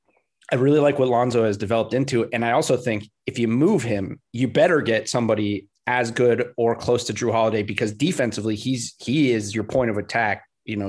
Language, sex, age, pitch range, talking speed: English, male, 30-49, 105-125 Hz, 210 wpm